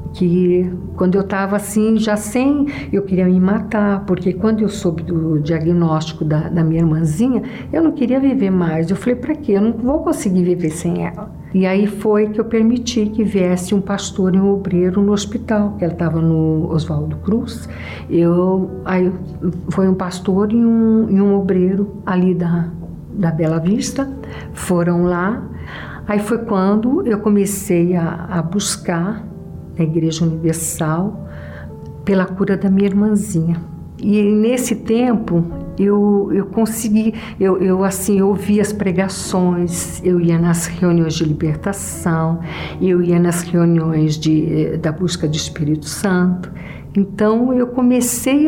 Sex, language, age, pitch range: female, Portuguese, 60-79, 170-210 Hz